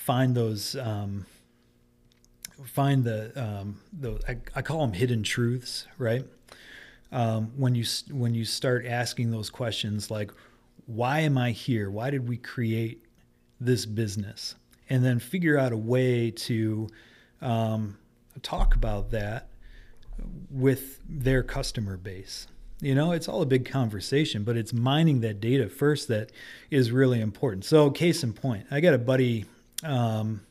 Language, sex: English, male